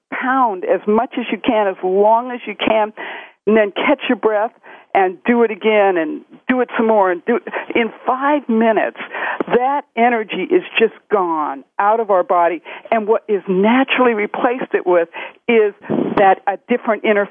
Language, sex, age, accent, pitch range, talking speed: English, female, 60-79, American, 205-255 Hz, 170 wpm